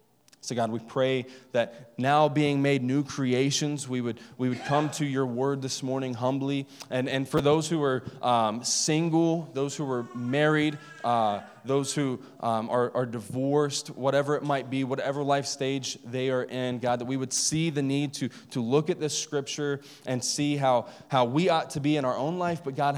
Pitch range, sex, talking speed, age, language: 120-150 Hz, male, 200 wpm, 20-39, English